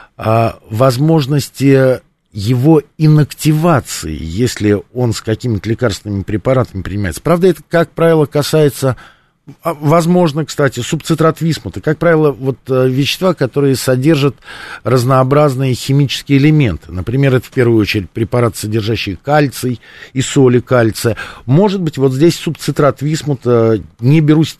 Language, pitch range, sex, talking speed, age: Russian, 105-150 Hz, male, 115 wpm, 50-69